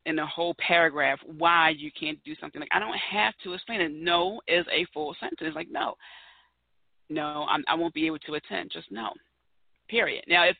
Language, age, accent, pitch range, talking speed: English, 30-49, American, 160-230 Hz, 200 wpm